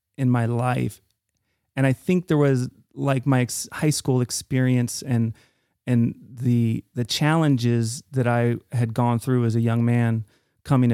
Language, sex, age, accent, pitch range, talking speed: English, male, 30-49, American, 115-135 Hz, 160 wpm